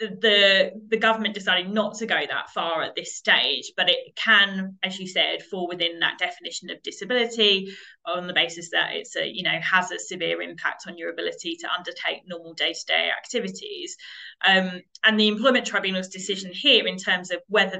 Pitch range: 180-220 Hz